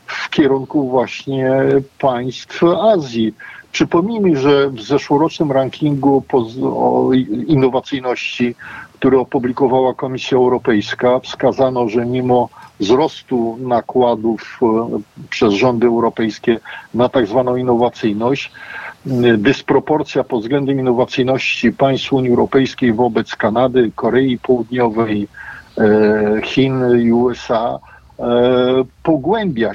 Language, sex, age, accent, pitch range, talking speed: Polish, male, 50-69, native, 120-140 Hz, 85 wpm